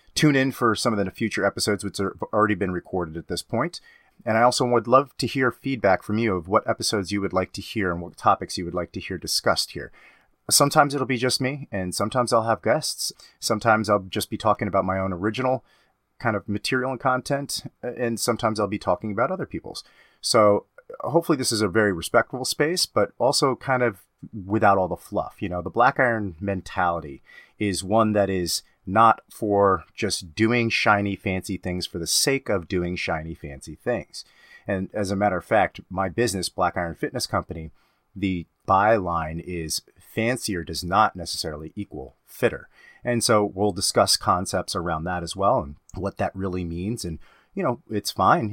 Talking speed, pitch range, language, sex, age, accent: 195 wpm, 90-115 Hz, English, male, 30-49, American